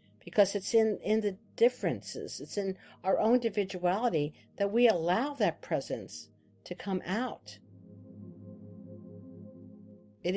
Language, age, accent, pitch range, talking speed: English, 50-69, American, 145-205 Hz, 115 wpm